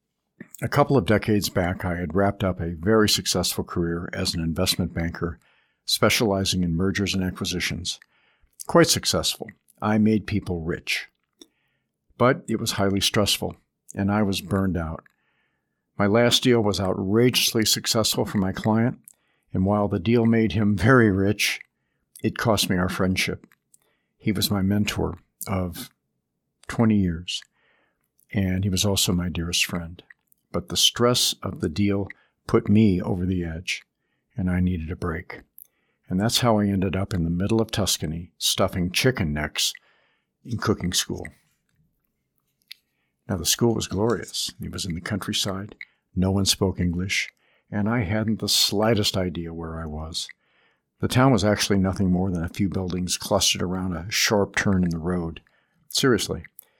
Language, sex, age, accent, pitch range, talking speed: English, male, 60-79, American, 90-105 Hz, 155 wpm